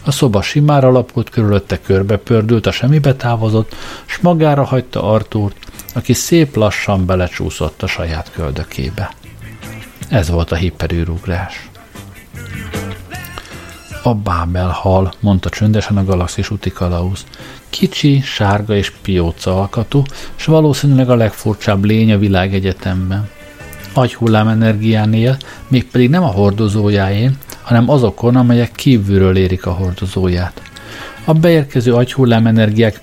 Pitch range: 95-125 Hz